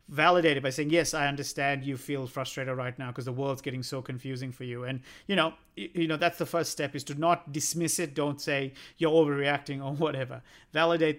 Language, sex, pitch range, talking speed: English, male, 140-165 Hz, 220 wpm